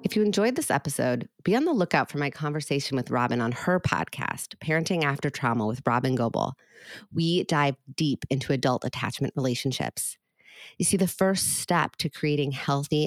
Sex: female